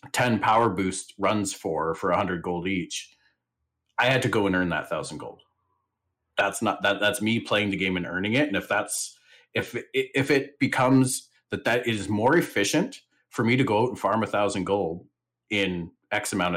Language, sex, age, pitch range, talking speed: English, male, 30-49, 90-110 Hz, 200 wpm